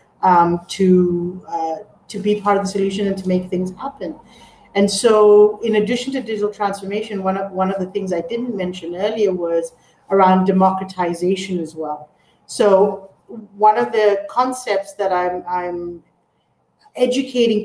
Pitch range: 170-205 Hz